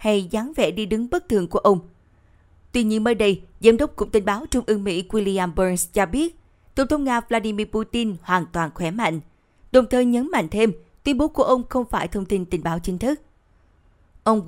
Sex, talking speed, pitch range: female, 215 wpm, 185-235 Hz